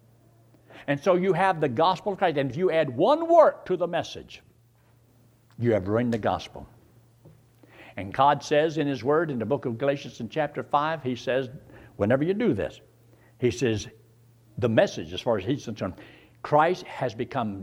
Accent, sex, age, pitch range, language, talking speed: American, male, 60-79, 115-190 Hz, English, 185 wpm